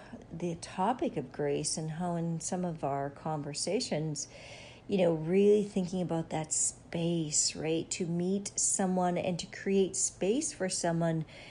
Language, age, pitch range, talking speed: English, 50-69, 155-185 Hz, 145 wpm